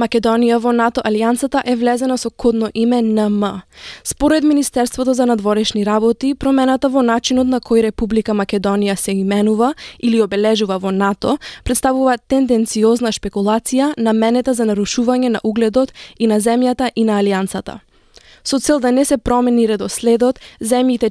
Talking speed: 145 wpm